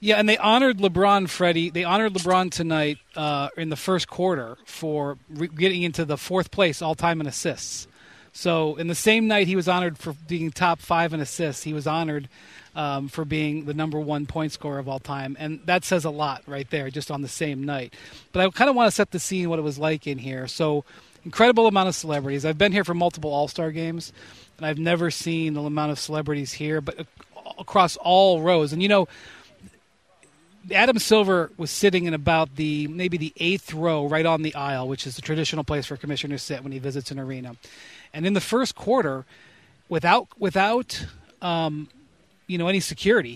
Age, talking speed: 40-59, 205 wpm